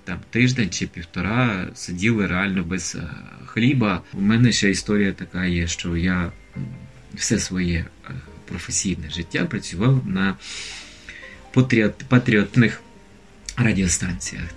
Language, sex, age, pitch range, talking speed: Ukrainian, male, 20-39, 85-105 Hz, 100 wpm